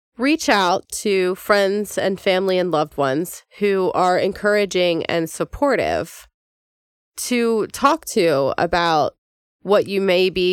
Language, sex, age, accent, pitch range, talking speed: English, female, 20-39, American, 170-200 Hz, 125 wpm